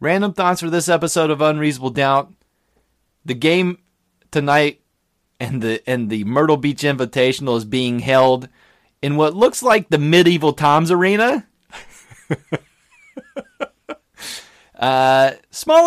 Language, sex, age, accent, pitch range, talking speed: English, male, 30-49, American, 130-195 Hz, 115 wpm